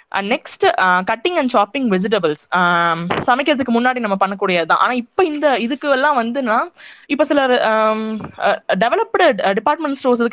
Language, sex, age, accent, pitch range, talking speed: Tamil, female, 20-39, native, 200-255 Hz, 135 wpm